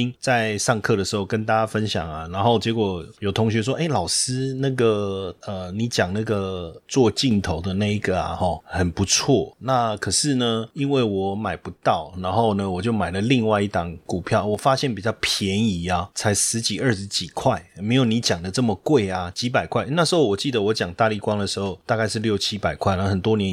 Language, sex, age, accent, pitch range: Chinese, male, 30-49, native, 95-120 Hz